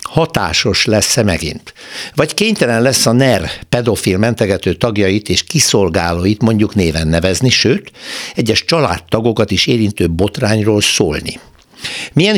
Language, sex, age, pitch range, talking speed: Hungarian, male, 60-79, 95-135 Hz, 115 wpm